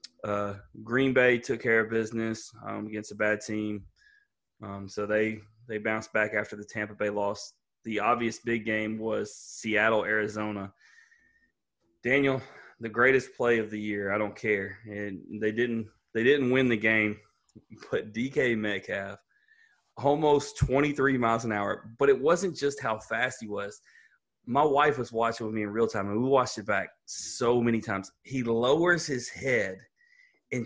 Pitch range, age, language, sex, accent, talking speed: 110-135 Hz, 20-39, English, male, American, 170 wpm